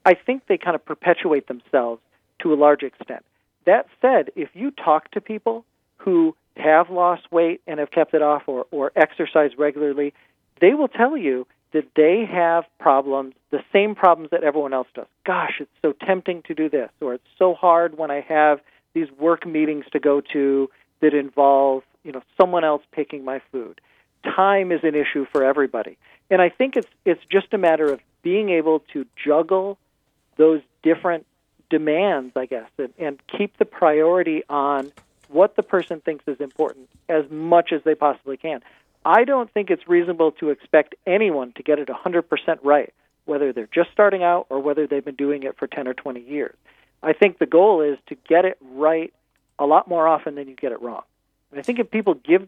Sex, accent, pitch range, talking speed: male, American, 145-185 Hz, 195 wpm